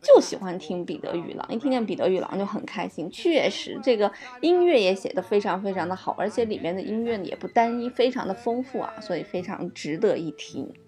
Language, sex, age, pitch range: Chinese, female, 20-39, 190-245 Hz